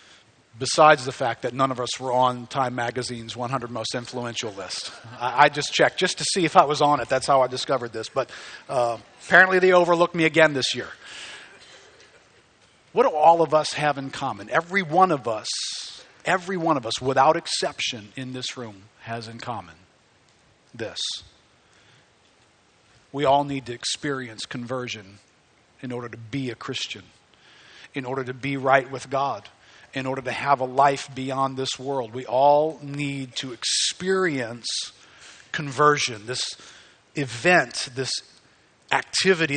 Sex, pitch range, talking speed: male, 125-155 Hz, 160 wpm